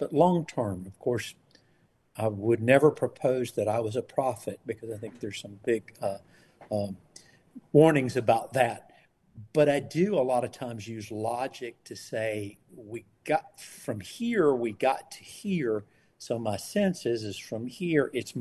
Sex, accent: male, American